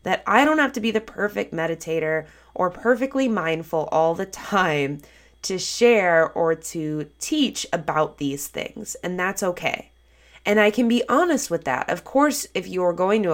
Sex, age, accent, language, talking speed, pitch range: female, 20-39, American, English, 175 wpm, 145-200 Hz